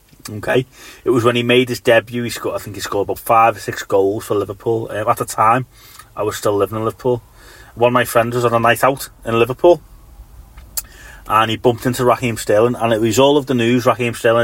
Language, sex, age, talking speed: English, male, 30-49, 235 wpm